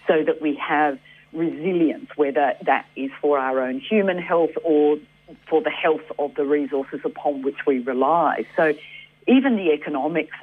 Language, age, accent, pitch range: English, 50-69, Australian, 140-160 Hz